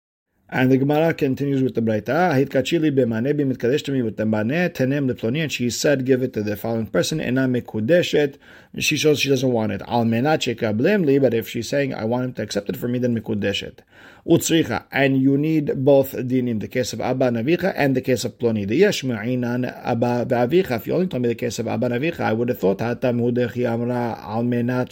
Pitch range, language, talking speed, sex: 120-150 Hz, English, 180 wpm, male